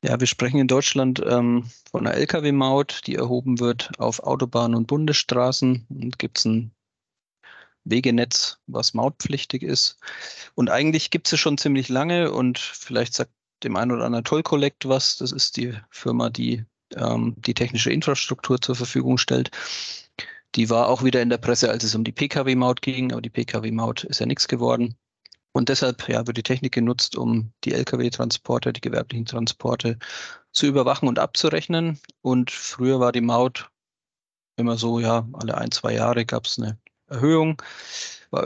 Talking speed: 165 wpm